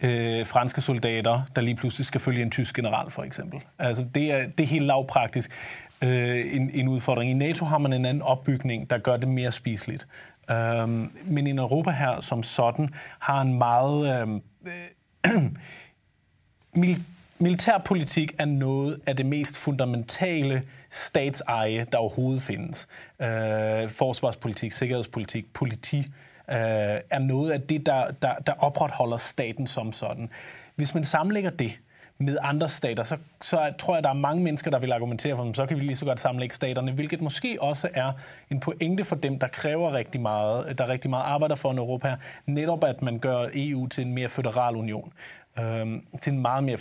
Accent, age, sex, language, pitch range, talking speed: native, 30-49, male, Danish, 120-145 Hz, 175 wpm